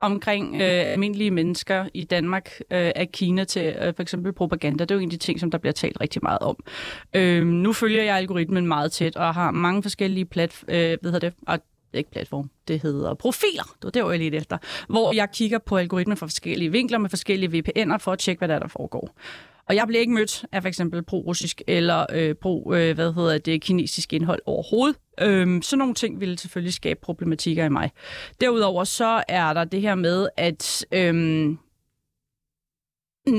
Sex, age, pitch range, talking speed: female, 30-49, 170-210 Hz, 195 wpm